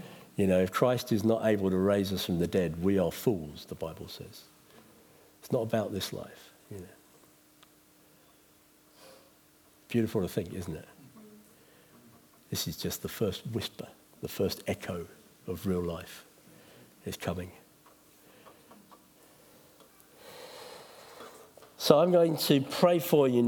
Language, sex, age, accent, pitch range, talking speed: English, male, 60-79, British, 100-160 Hz, 135 wpm